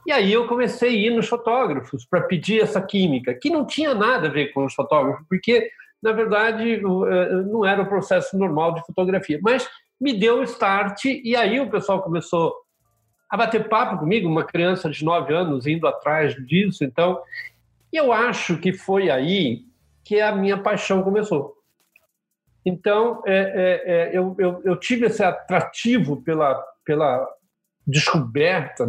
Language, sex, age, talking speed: Portuguese, male, 50-69, 165 wpm